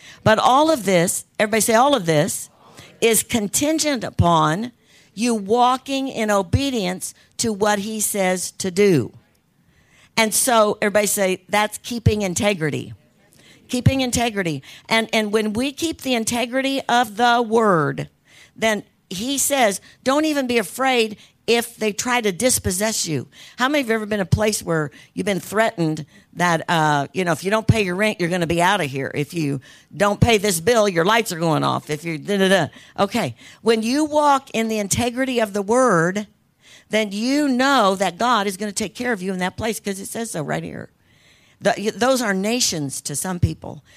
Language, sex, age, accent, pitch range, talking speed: English, female, 50-69, American, 165-225 Hz, 185 wpm